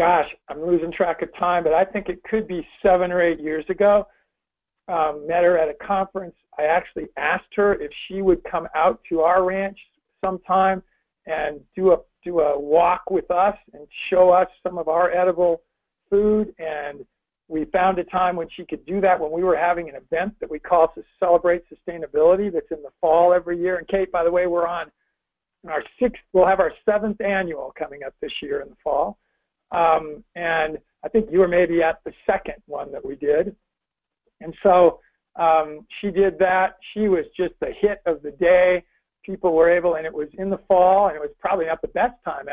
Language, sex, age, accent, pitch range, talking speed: English, male, 50-69, American, 155-190 Hz, 205 wpm